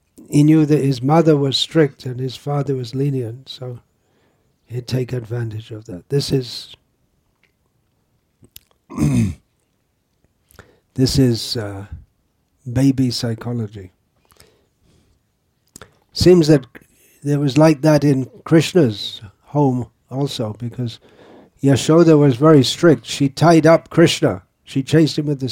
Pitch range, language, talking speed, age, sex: 120-150 Hz, English, 115 wpm, 60-79, male